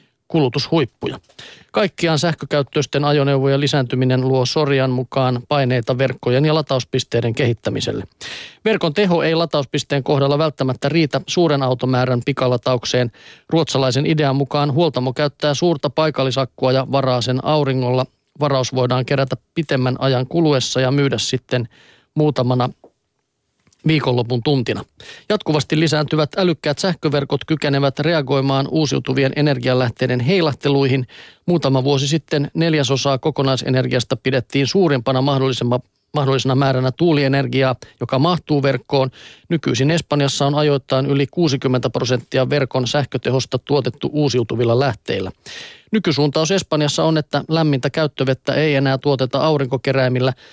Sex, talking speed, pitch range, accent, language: male, 110 wpm, 130-150 Hz, native, Finnish